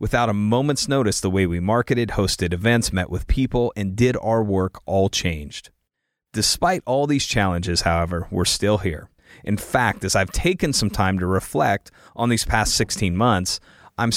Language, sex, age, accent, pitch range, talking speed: English, male, 30-49, American, 95-125 Hz, 180 wpm